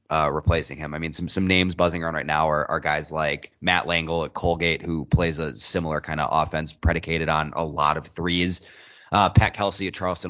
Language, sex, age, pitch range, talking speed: English, male, 20-39, 75-90 Hz, 220 wpm